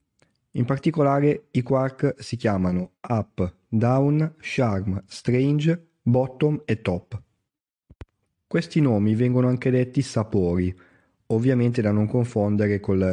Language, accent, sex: Italian, native, male